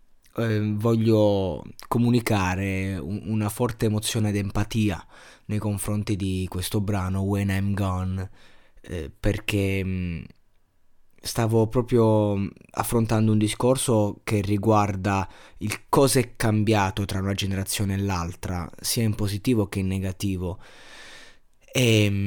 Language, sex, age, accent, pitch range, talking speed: Italian, male, 20-39, native, 95-110 Hz, 115 wpm